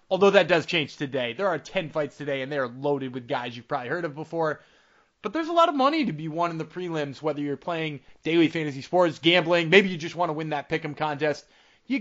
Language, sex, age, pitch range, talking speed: English, male, 20-39, 145-200 Hz, 250 wpm